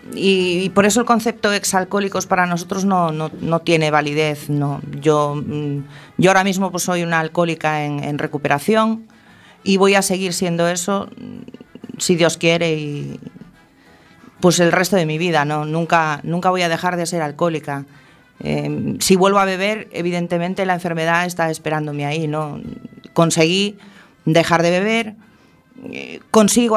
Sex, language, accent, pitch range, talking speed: female, Spanish, Spanish, 150-180 Hz, 150 wpm